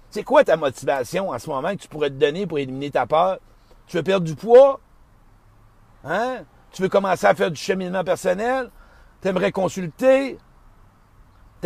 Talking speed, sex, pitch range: 175 wpm, male, 155-225 Hz